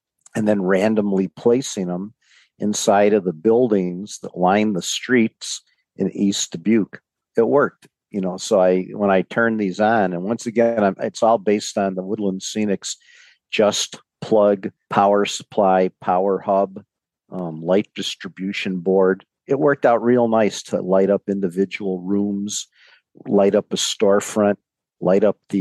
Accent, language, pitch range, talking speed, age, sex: American, English, 95-105 Hz, 150 wpm, 50-69, male